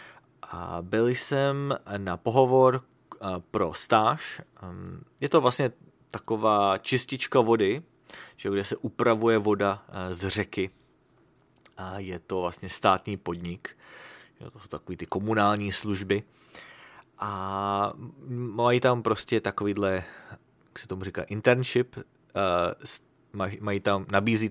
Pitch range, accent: 95-125 Hz, Czech